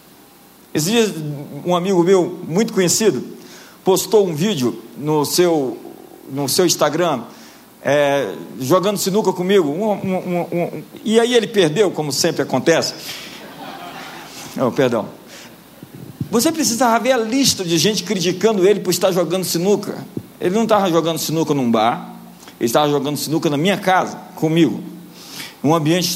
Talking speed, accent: 125 wpm, Brazilian